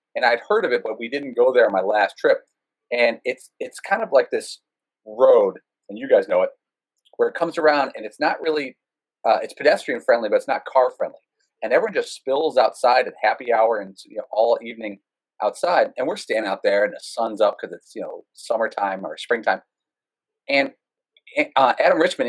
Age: 40-59